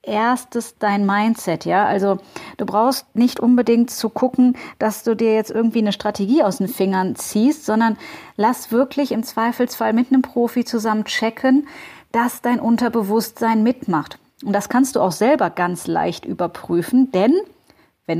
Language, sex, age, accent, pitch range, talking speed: German, female, 30-49, German, 190-245 Hz, 155 wpm